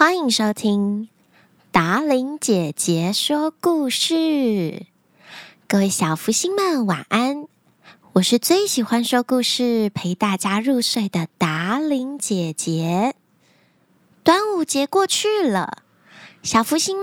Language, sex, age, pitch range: Chinese, female, 20-39, 205-320 Hz